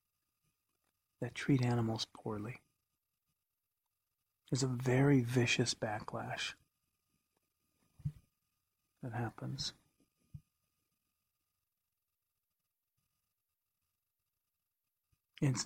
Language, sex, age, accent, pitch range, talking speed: English, male, 40-59, American, 115-135 Hz, 45 wpm